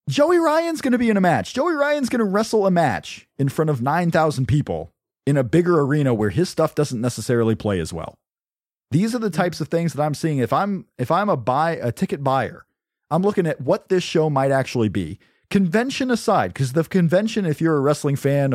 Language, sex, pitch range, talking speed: English, male, 110-160 Hz, 225 wpm